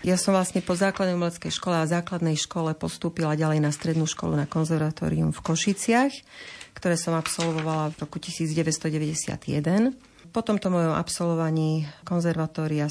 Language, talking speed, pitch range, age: Slovak, 140 wpm, 155-180 Hz, 40-59